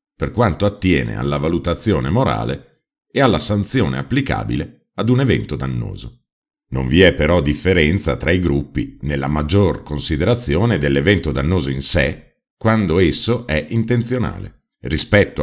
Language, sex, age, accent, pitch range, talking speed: Italian, male, 50-69, native, 75-105 Hz, 130 wpm